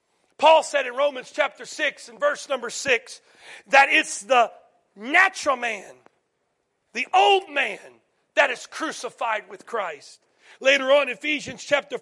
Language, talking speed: English, 135 wpm